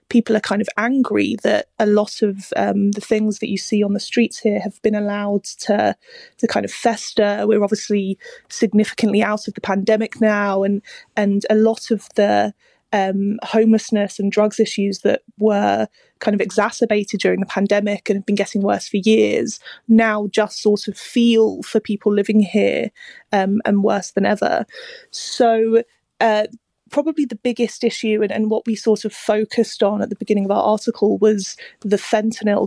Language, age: English, 20-39